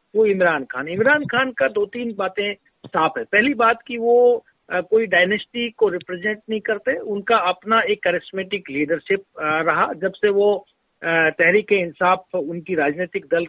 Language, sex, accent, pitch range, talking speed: Hindi, male, native, 180-235 Hz, 155 wpm